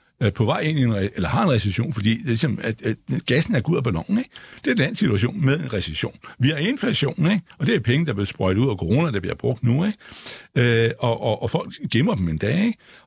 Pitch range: 105-155 Hz